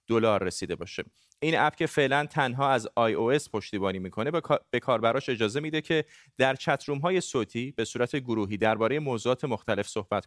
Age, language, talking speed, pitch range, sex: 30-49, Persian, 175 wpm, 115-150 Hz, male